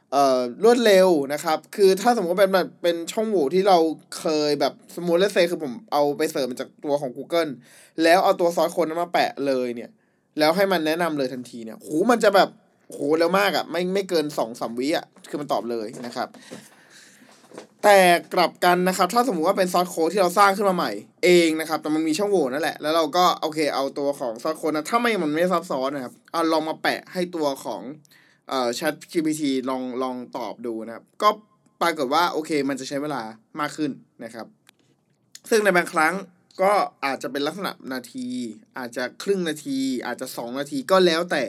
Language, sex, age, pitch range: Thai, male, 20-39, 140-185 Hz